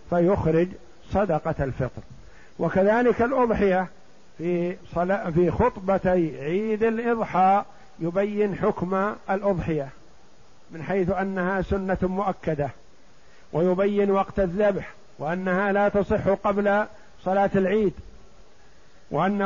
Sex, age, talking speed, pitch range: male, 50-69, 85 wpm, 185-210 Hz